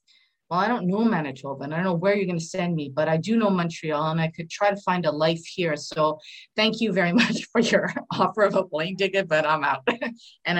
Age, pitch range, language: 30-49, 150-195 Hz, English